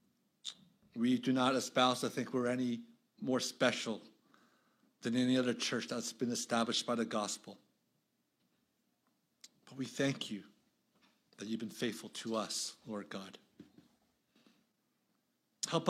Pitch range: 130-180 Hz